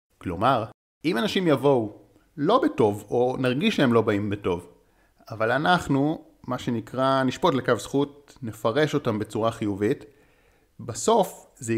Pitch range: 100-140 Hz